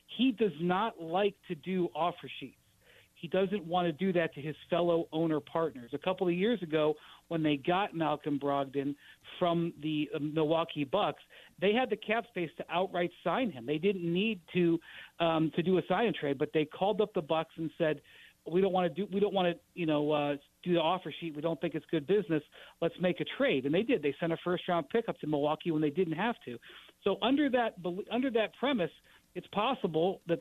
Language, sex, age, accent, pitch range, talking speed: English, male, 40-59, American, 160-200 Hz, 220 wpm